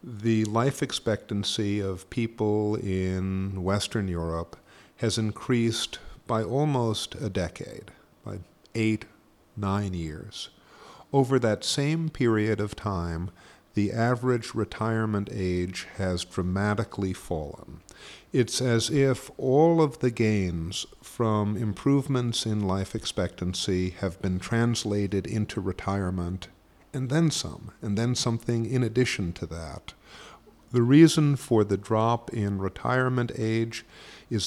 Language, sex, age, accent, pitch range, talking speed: Italian, male, 50-69, American, 95-120 Hz, 115 wpm